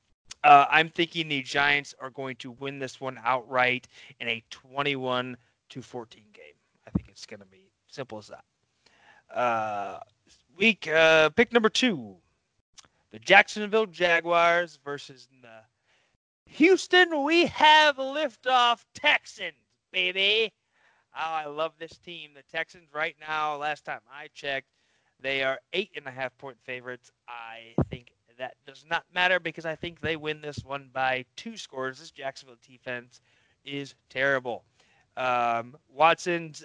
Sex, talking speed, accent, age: male, 145 wpm, American, 30-49